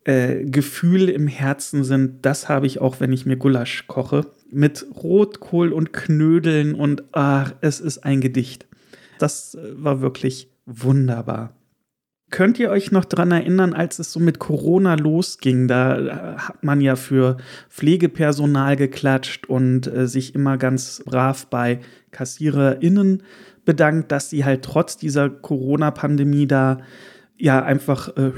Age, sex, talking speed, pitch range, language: 40-59, male, 140 wpm, 135-180 Hz, German